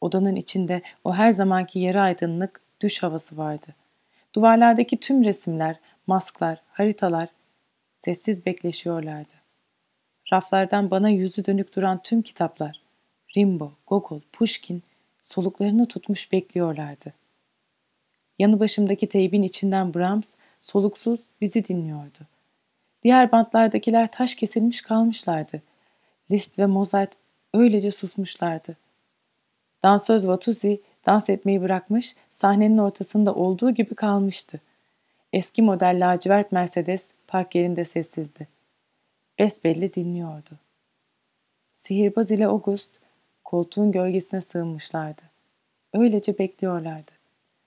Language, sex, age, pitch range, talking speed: Turkish, female, 30-49, 170-205 Hz, 95 wpm